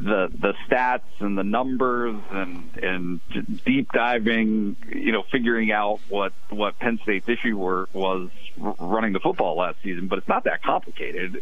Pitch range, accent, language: 100-135 Hz, American, English